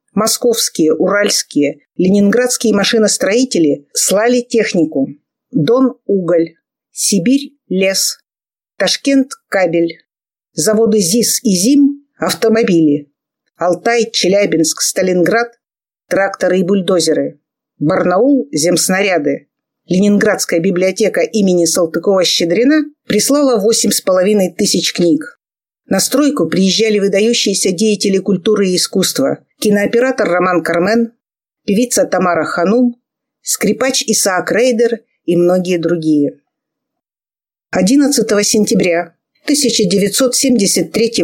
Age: 50-69